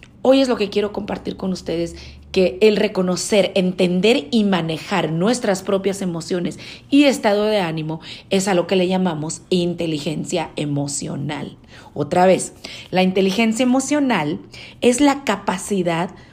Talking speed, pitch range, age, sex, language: 135 wpm, 180-235 Hz, 40-59, female, Spanish